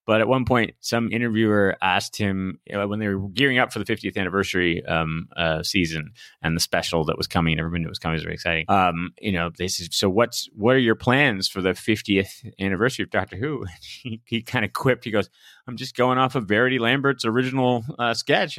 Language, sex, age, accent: English, male, 30-49, American